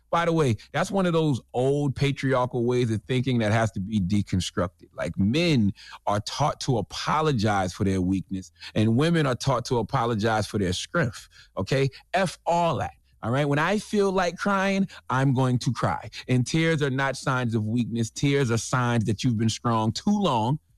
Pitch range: 110-150 Hz